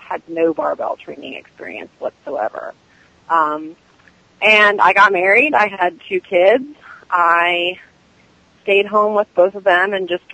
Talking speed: 140 wpm